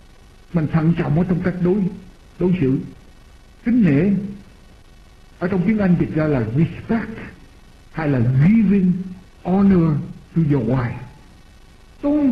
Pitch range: 130-200 Hz